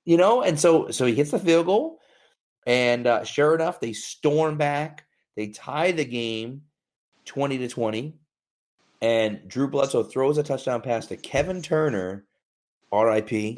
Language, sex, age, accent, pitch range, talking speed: English, male, 30-49, American, 110-140 Hz, 155 wpm